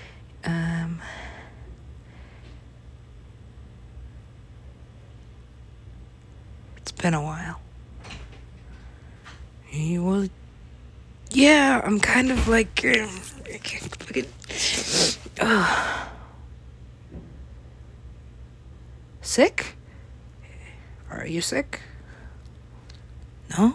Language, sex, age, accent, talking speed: English, female, 40-59, American, 55 wpm